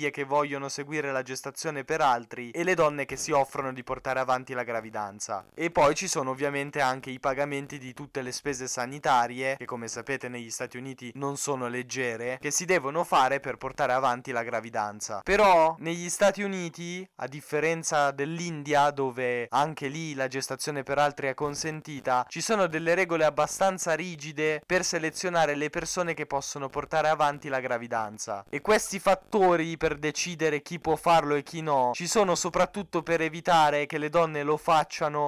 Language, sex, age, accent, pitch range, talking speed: Italian, male, 10-29, native, 135-170 Hz, 175 wpm